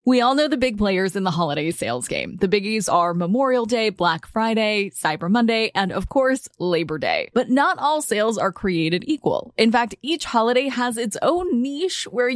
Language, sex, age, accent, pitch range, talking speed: English, female, 20-39, American, 200-300 Hz, 200 wpm